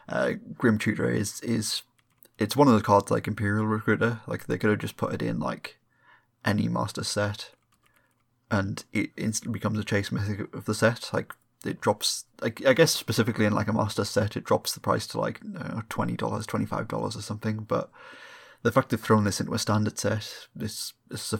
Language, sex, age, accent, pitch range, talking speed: English, male, 20-39, British, 105-120 Hz, 205 wpm